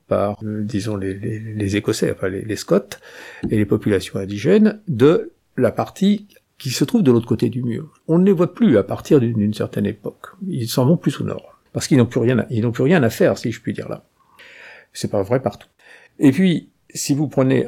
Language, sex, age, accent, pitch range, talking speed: French, male, 50-69, French, 105-160 Hz, 225 wpm